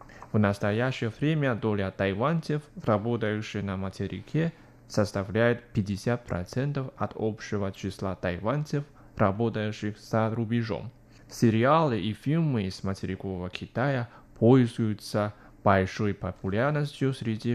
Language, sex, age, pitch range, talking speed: Russian, male, 20-39, 105-130 Hz, 90 wpm